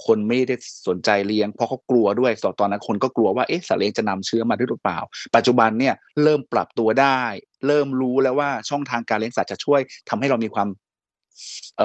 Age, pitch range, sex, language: 20-39, 105-135 Hz, male, Thai